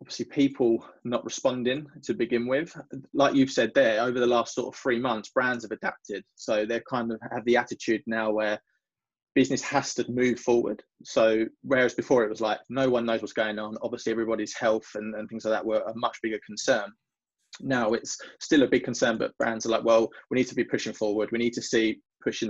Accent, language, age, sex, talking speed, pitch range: British, English, 20-39, male, 220 wpm, 110-125 Hz